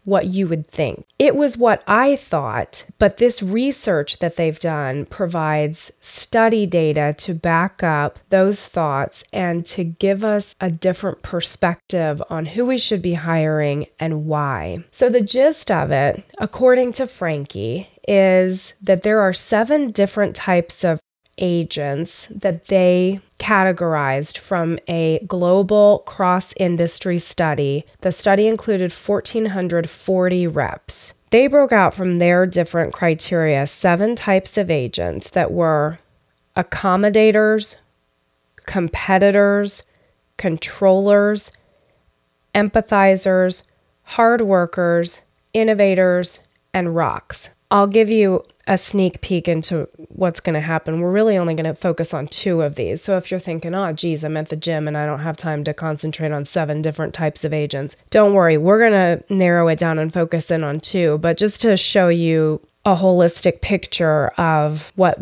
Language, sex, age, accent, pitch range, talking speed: English, female, 20-39, American, 160-200 Hz, 145 wpm